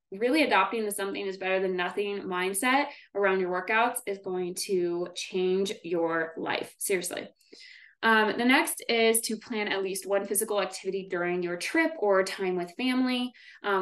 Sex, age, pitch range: female, 20-39, 185-240 Hz